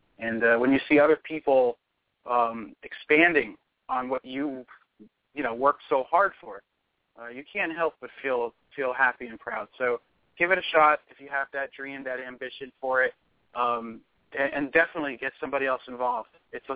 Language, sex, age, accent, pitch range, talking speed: English, male, 30-49, American, 130-155 Hz, 185 wpm